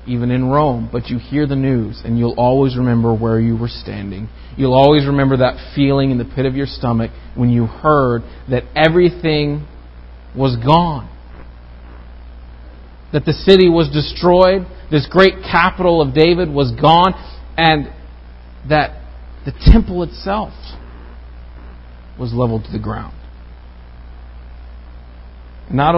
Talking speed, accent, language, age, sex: 130 wpm, American, English, 40-59, male